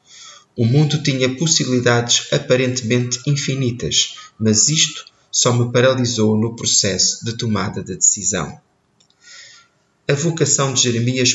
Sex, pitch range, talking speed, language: male, 105-135 Hz, 110 wpm, Portuguese